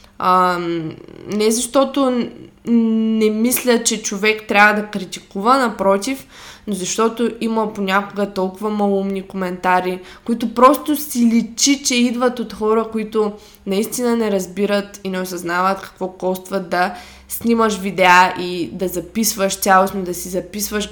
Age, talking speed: 20-39, 130 wpm